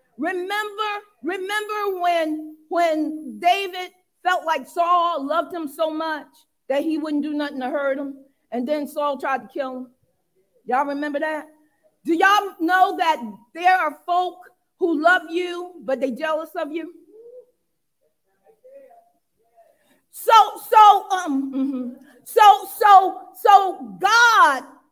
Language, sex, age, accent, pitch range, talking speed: English, female, 40-59, American, 300-410 Hz, 130 wpm